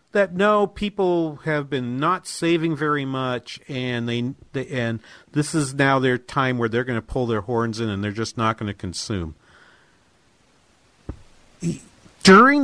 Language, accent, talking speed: English, American, 160 wpm